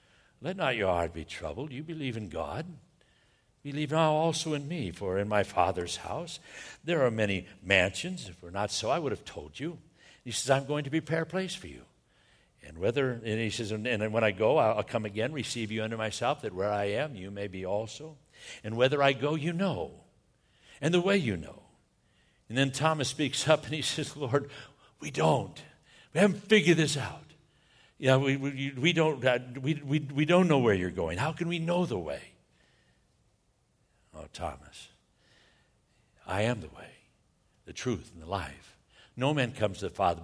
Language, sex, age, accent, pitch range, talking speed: English, male, 60-79, American, 100-150 Hz, 195 wpm